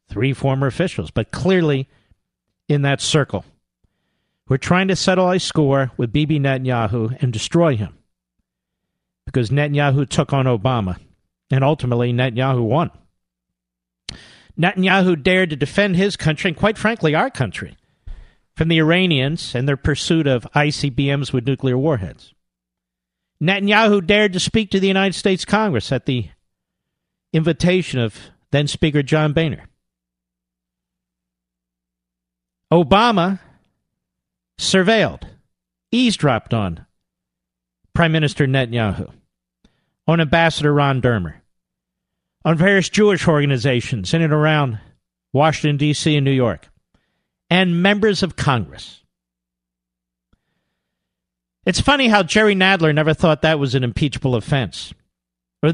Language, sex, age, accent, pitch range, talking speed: English, male, 50-69, American, 100-165 Hz, 115 wpm